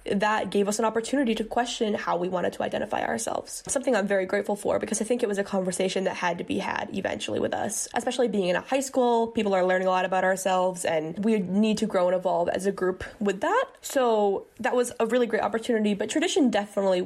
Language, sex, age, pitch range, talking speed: English, female, 10-29, 195-245 Hz, 240 wpm